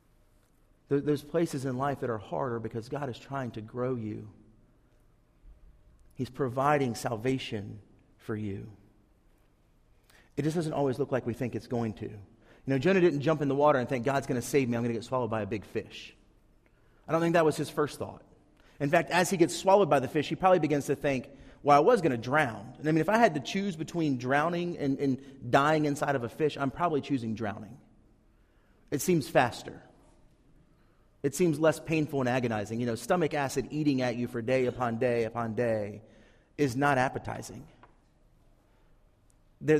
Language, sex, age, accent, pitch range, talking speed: English, male, 40-59, American, 115-155 Hz, 195 wpm